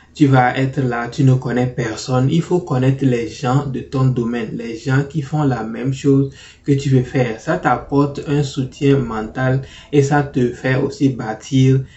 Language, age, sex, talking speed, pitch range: French, 20-39, male, 190 wpm, 120-140 Hz